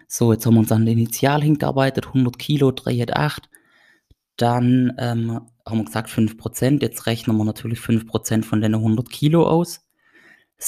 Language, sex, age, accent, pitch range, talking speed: German, male, 20-39, German, 115-140 Hz, 175 wpm